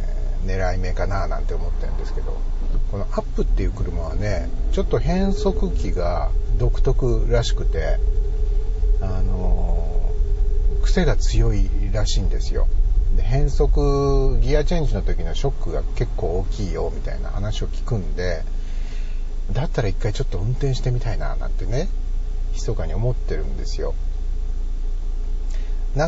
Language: Japanese